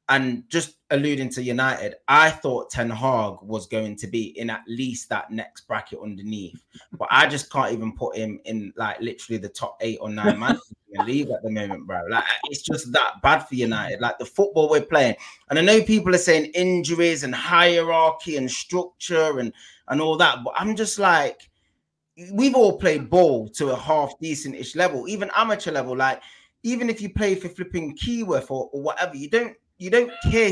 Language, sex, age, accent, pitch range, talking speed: English, male, 20-39, British, 115-180 Hz, 200 wpm